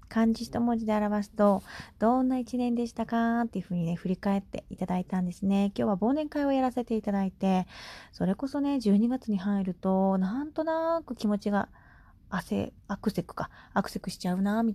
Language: Japanese